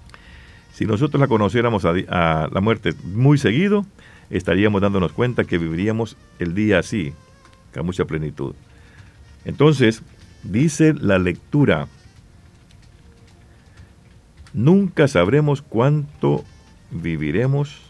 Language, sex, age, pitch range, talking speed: Spanish, male, 50-69, 95-140 Hz, 95 wpm